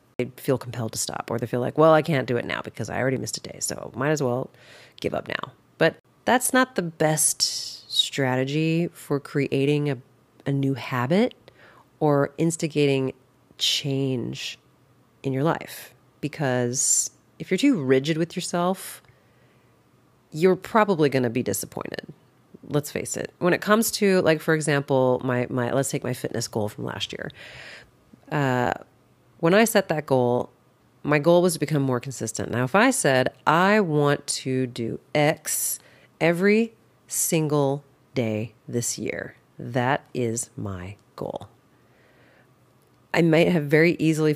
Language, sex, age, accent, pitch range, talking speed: English, female, 30-49, American, 125-165 Hz, 155 wpm